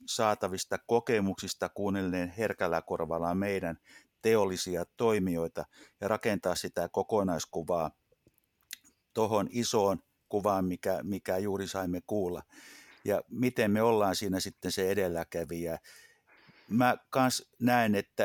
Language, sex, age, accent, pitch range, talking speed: Finnish, male, 60-79, native, 85-105 Hz, 105 wpm